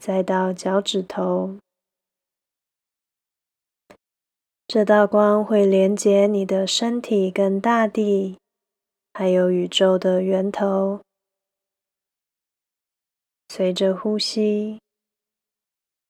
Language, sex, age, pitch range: Chinese, female, 20-39, 190-210 Hz